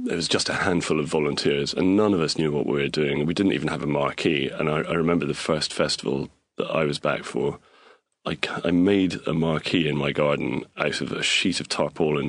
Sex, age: male, 30-49